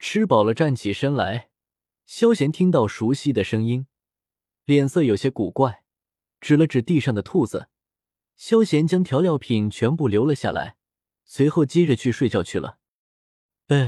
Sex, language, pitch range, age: male, Chinese, 110-155 Hz, 20-39